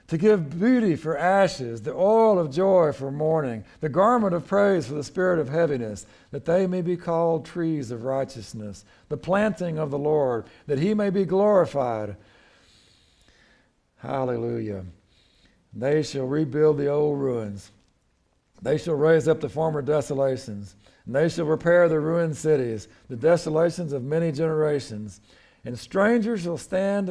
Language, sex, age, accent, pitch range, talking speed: English, male, 60-79, American, 130-180 Hz, 150 wpm